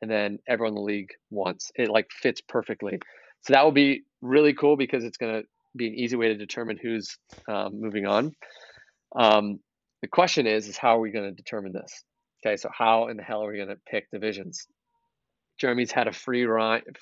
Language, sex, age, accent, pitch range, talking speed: English, male, 30-49, American, 110-125 Hz, 210 wpm